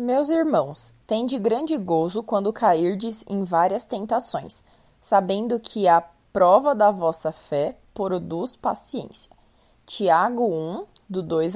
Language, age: Portuguese, 20-39